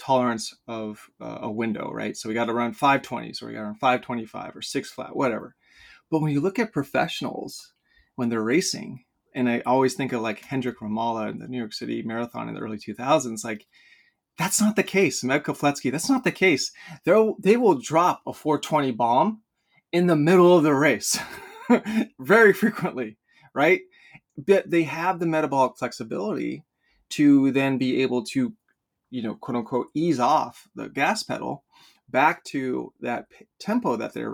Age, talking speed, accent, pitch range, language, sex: 30-49, 175 wpm, American, 120-155 Hz, English, male